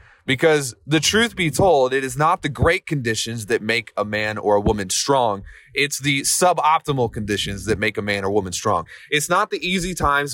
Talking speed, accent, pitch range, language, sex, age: 205 wpm, American, 100-145 Hz, English, male, 30-49